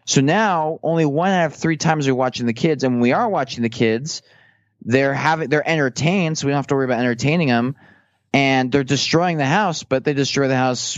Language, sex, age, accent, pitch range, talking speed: English, male, 20-39, American, 120-160 Hz, 235 wpm